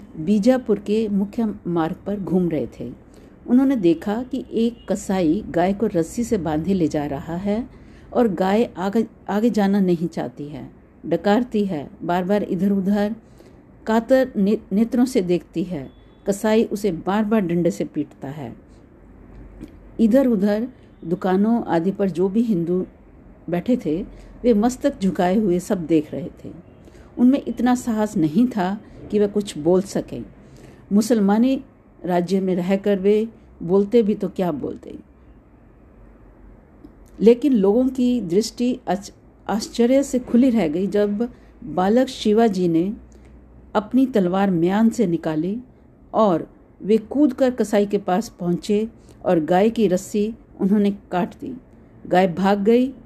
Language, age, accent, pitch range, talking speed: Hindi, 50-69, native, 180-235 Hz, 140 wpm